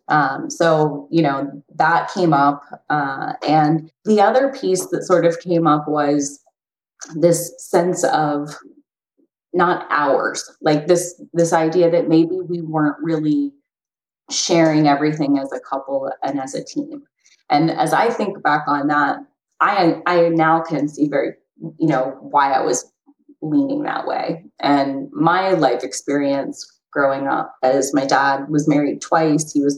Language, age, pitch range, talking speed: English, 20-39, 145-175 Hz, 155 wpm